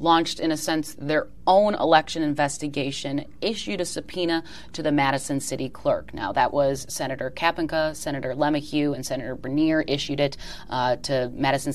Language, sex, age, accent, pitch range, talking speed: English, female, 30-49, American, 145-170 Hz, 160 wpm